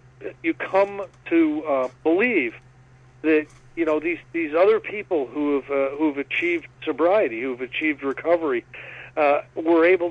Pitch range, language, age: 130-160 Hz, English, 40-59